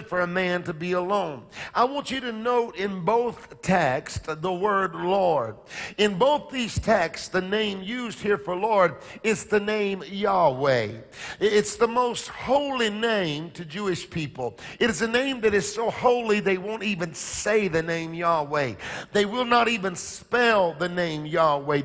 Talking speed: 170 wpm